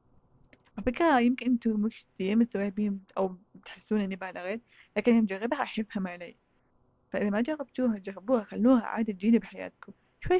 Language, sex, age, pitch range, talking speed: Arabic, female, 20-39, 200-235 Hz, 140 wpm